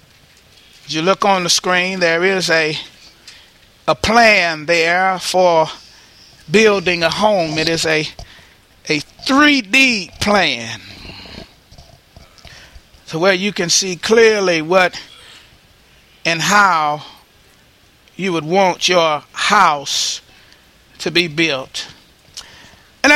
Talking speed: 105 wpm